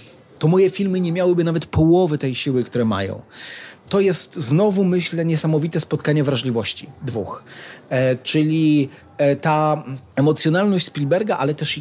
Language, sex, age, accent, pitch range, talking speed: Polish, male, 30-49, native, 125-160 Hz, 125 wpm